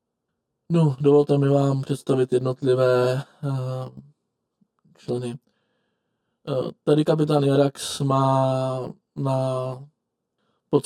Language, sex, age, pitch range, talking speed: Czech, male, 20-39, 125-140 Hz, 65 wpm